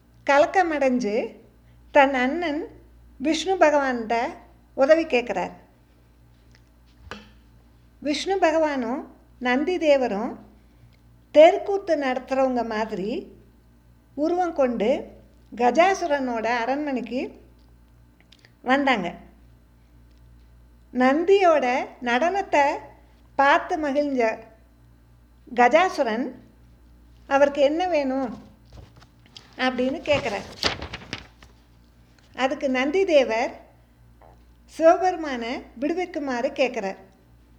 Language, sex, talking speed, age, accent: Tamil, female, 55 wpm, 50-69, native